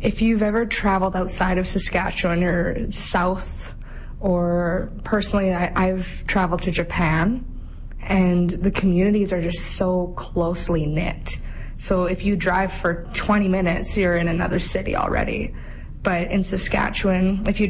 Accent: American